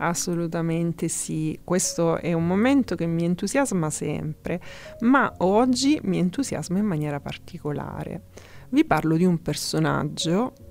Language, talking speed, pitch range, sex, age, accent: Italian, 125 wpm, 155-200 Hz, female, 30-49, native